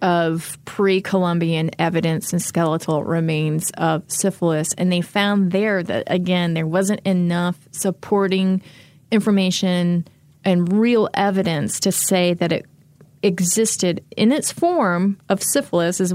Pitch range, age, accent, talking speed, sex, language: 175-200 Hz, 30-49, American, 125 wpm, female, English